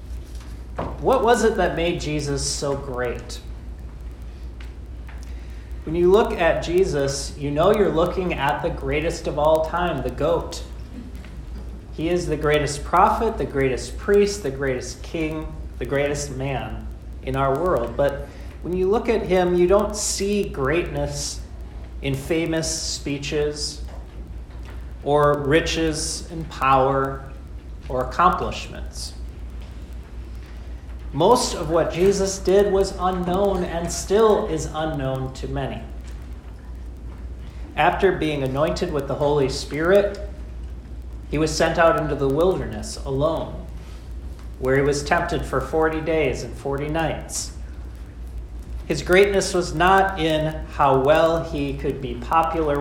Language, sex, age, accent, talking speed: English, male, 40-59, American, 125 wpm